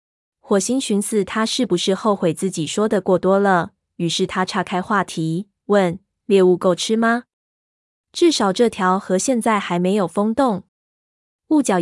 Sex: female